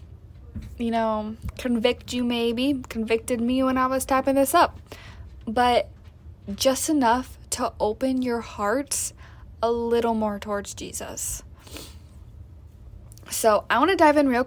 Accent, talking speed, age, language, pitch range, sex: American, 135 wpm, 10-29, English, 210-245 Hz, female